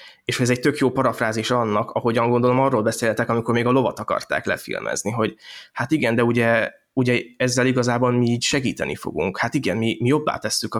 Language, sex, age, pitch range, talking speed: Hungarian, male, 20-39, 105-120 Hz, 200 wpm